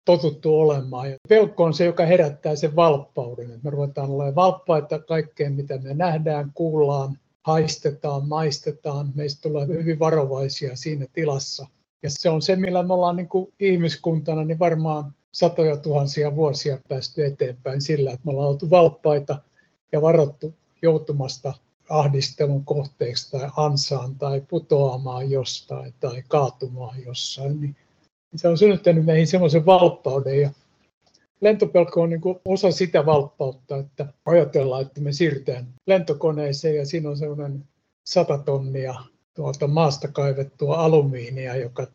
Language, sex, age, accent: Finnish, male, 60-79, native